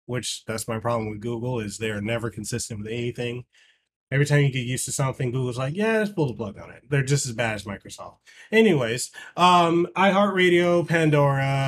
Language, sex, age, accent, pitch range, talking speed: English, male, 20-39, American, 125-155 Hz, 195 wpm